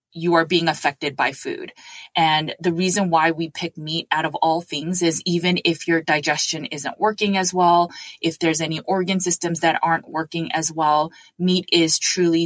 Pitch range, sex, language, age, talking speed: 155-175 Hz, female, English, 20-39, 190 wpm